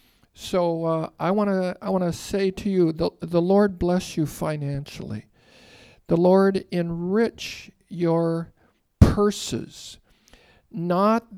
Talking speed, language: 110 wpm, English